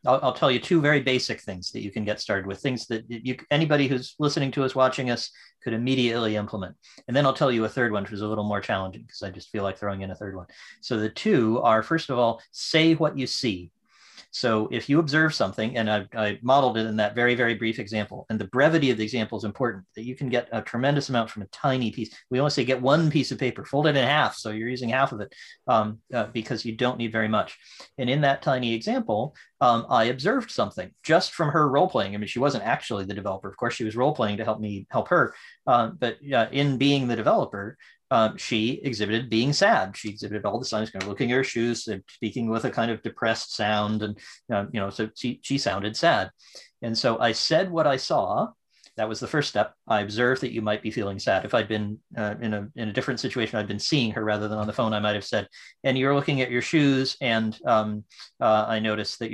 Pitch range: 105-130 Hz